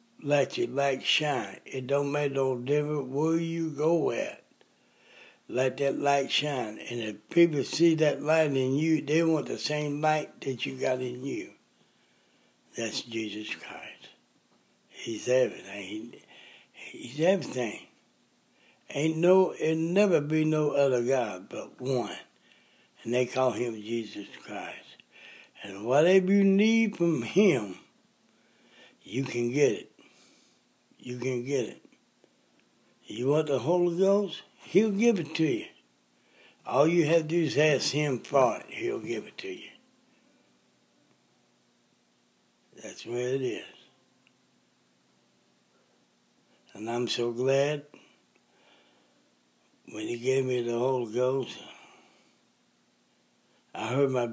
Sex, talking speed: male, 130 wpm